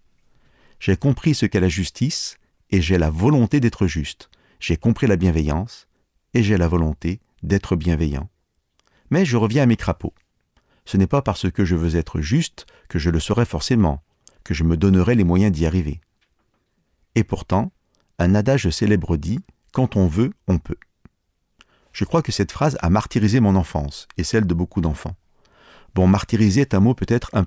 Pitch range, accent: 85-115 Hz, French